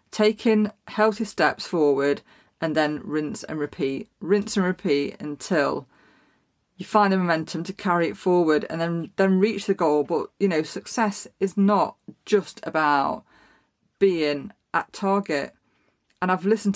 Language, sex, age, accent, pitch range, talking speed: English, female, 30-49, British, 155-210 Hz, 145 wpm